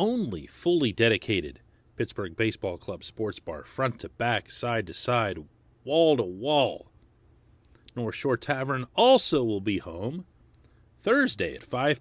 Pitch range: 105-135 Hz